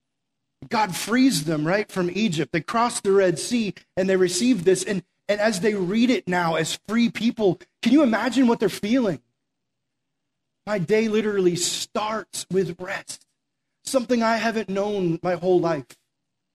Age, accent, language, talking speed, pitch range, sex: 30-49, American, English, 160 wpm, 175-230 Hz, male